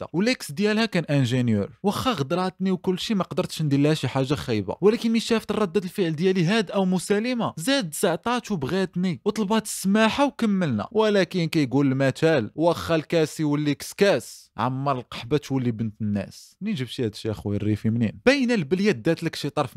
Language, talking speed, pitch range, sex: Arabic, 155 wpm, 140-205 Hz, male